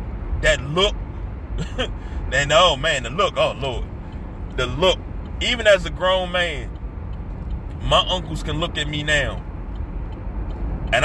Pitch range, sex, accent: 85-115 Hz, male, American